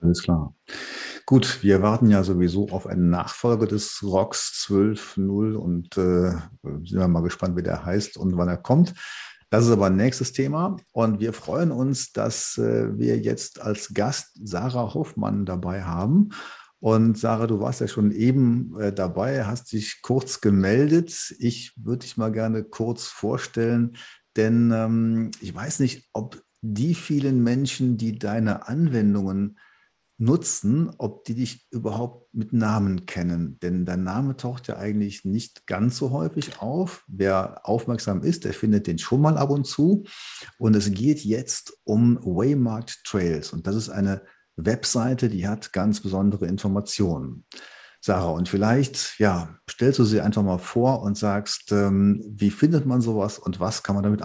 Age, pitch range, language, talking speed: 50-69, 100-125 Hz, German, 160 wpm